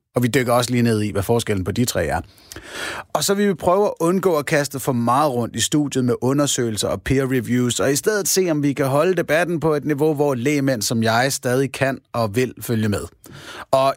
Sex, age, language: male, 30-49, Danish